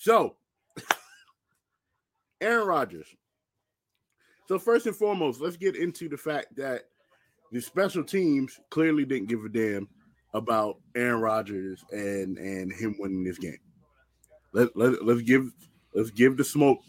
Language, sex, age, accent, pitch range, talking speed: English, male, 20-39, American, 110-150 Hz, 130 wpm